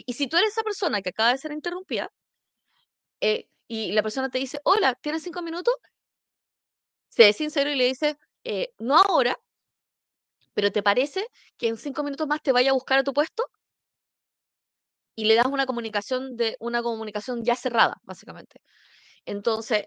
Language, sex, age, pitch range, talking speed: Spanish, female, 20-39, 225-295 Hz, 170 wpm